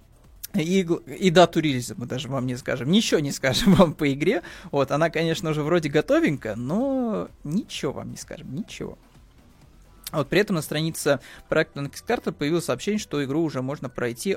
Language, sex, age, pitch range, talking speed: Russian, male, 20-39, 135-175 Hz, 165 wpm